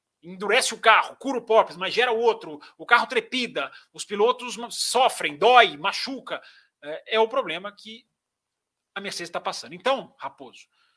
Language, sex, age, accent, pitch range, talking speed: Portuguese, male, 40-59, Brazilian, 190-250 Hz, 160 wpm